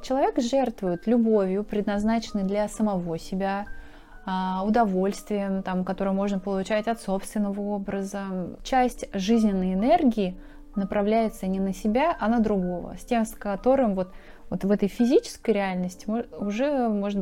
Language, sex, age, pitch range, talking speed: Russian, female, 20-39, 195-240 Hz, 120 wpm